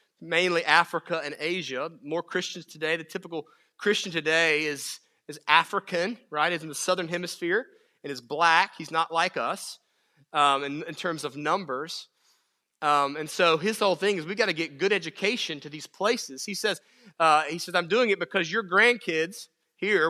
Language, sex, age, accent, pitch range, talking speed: English, male, 30-49, American, 160-215 Hz, 175 wpm